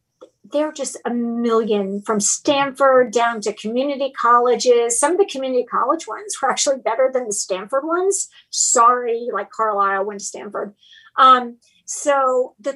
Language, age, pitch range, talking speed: English, 50-69, 225-285 Hz, 150 wpm